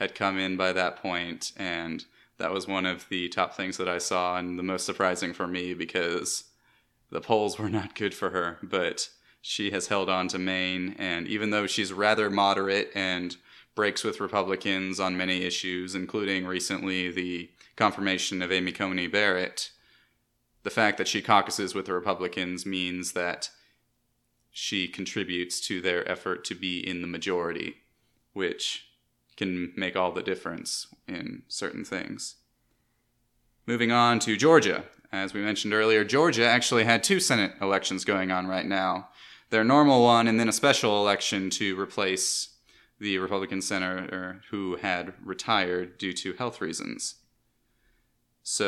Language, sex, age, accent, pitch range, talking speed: English, male, 20-39, American, 90-110 Hz, 155 wpm